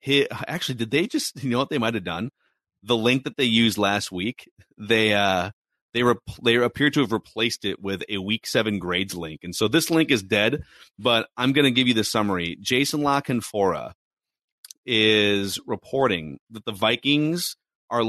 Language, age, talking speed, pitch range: English, 30-49, 190 wpm, 110-140 Hz